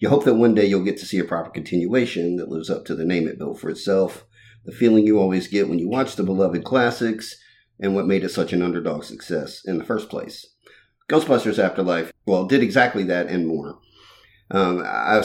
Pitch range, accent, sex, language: 90-110 Hz, American, male, English